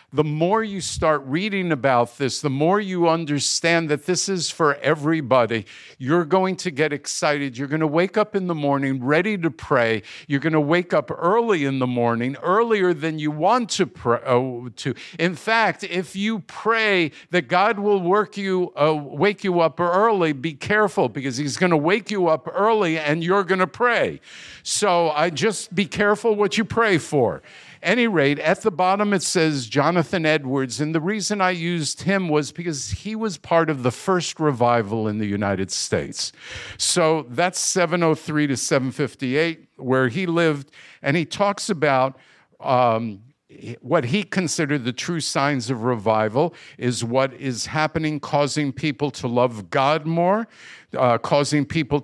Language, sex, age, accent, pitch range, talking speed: English, male, 50-69, American, 135-185 Hz, 175 wpm